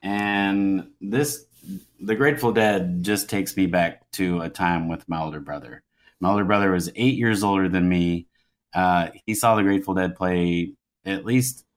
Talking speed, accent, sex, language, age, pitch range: 175 wpm, American, male, English, 30-49, 85-100 Hz